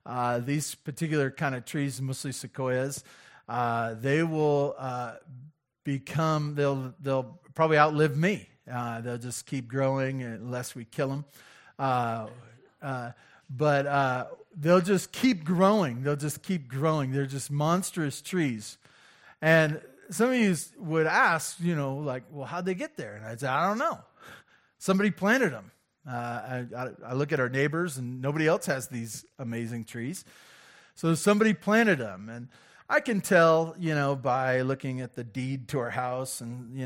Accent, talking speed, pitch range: American, 165 wpm, 125-160 Hz